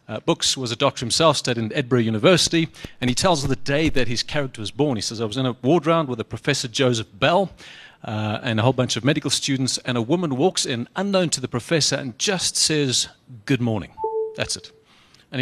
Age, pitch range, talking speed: 40-59, 120-150 Hz, 230 wpm